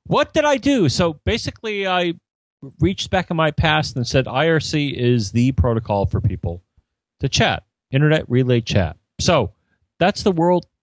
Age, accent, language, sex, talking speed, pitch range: 40-59, American, English, male, 160 wpm, 115-160 Hz